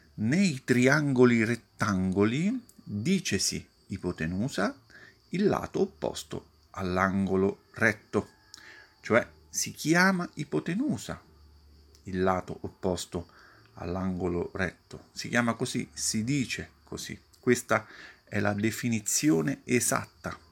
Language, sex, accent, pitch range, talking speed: Italian, male, native, 90-115 Hz, 90 wpm